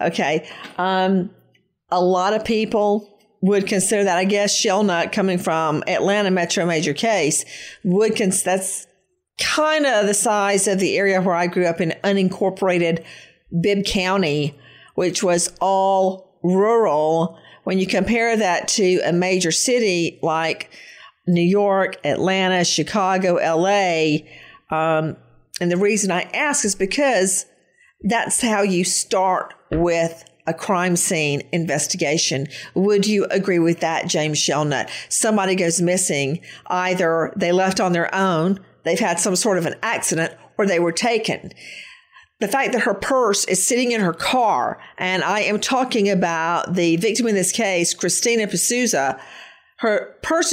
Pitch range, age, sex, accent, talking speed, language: 175-220 Hz, 50-69, female, American, 145 wpm, English